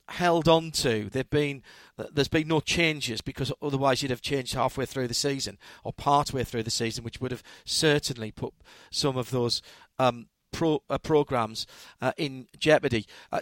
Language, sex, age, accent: English, male, 40-59, British